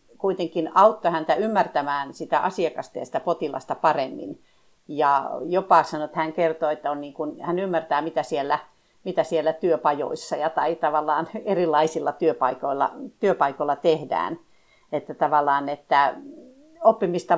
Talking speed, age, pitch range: 120 wpm, 50-69, 155-200 Hz